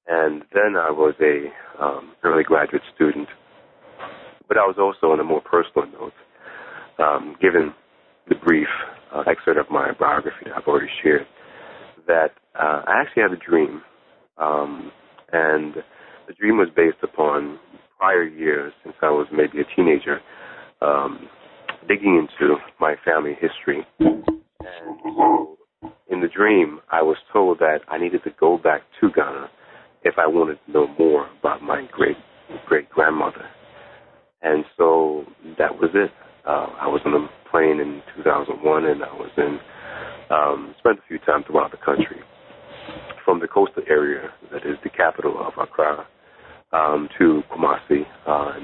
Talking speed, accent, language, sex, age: 155 wpm, American, English, male, 30-49